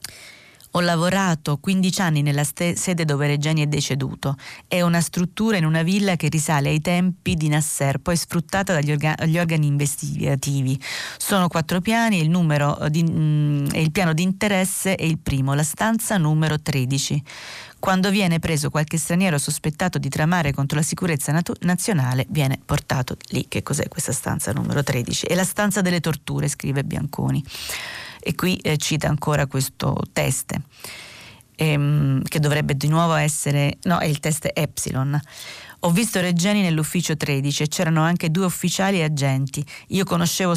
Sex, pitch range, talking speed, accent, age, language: female, 145-170 Hz, 155 wpm, native, 30-49, Italian